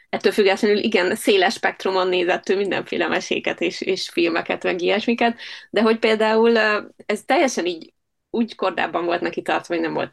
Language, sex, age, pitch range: Hungarian, female, 20-39, 180-235 Hz